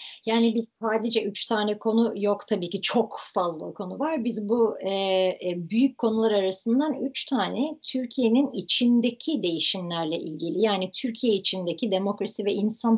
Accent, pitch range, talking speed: native, 175-225 Hz, 150 wpm